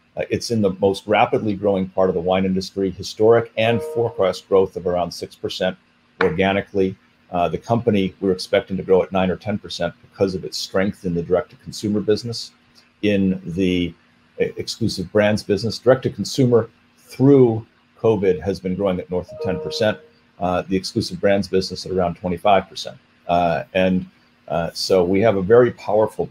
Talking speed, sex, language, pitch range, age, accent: 160 wpm, male, English, 90-105 Hz, 40-59, American